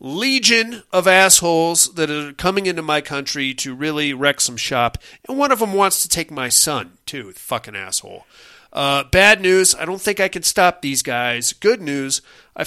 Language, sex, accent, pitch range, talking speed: English, male, American, 125-175 Hz, 190 wpm